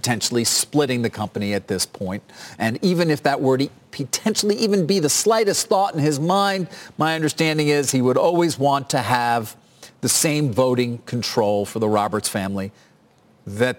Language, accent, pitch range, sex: English, American, 115-165 Hz, male